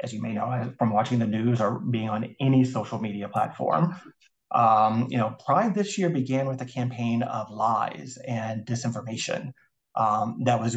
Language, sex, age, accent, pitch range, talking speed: English, male, 30-49, American, 115-135 Hz, 180 wpm